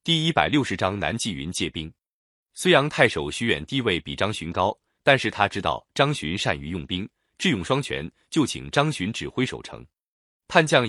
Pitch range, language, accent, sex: 85-140 Hz, Chinese, native, male